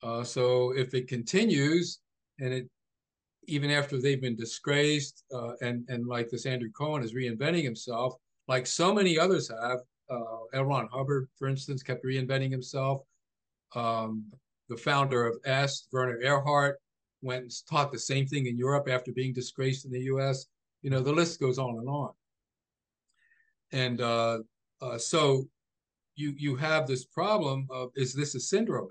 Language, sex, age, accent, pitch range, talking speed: English, male, 50-69, American, 125-145 Hz, 165 wpm